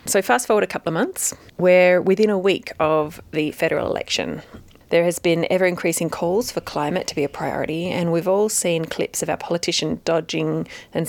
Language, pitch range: English, 160-195 Hz